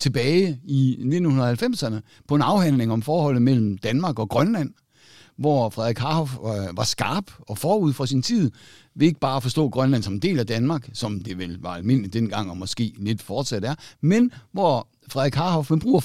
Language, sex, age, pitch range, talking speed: Danish, male, 60-79, 115-155 Hz, 195 wpm